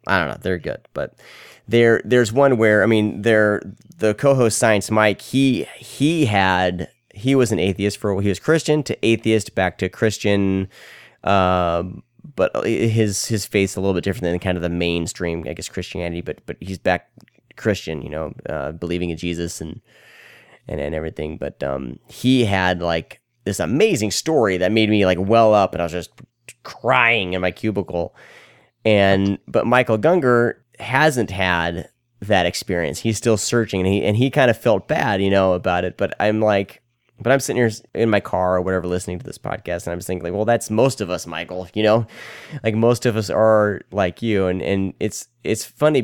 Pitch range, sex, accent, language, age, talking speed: 90-115 Hz, male, American, English, 30-49, 195 wpm